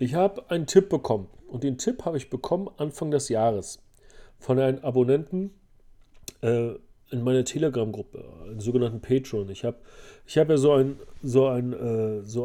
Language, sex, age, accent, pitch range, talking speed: German, male, 40-59, German, 115-140 Hz, 170 wpm